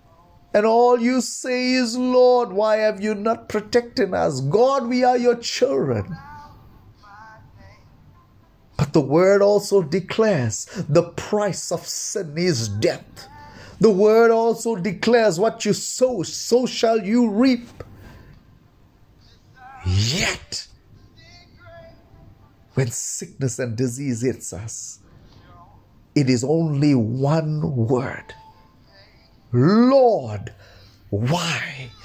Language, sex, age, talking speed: English, male, 30-49, 100 wpm